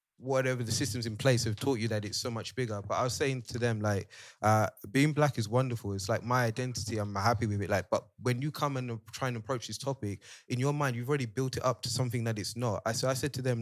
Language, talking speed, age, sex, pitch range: English, 280 wpm, 20-39, male, 110-130 Hz